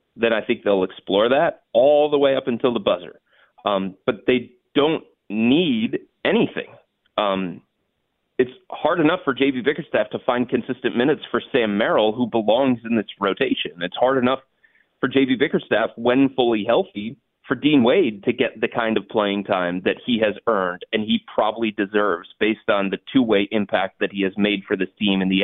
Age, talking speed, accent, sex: 30-49, 185 wpm, American, male